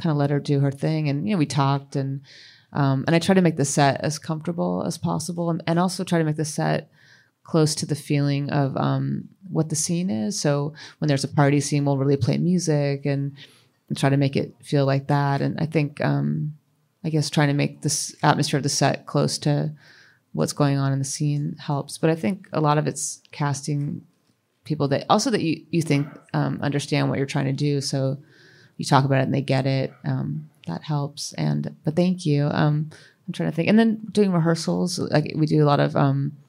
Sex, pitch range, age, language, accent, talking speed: female, 140-155 Hz, 30-49, English, American, 230 wpm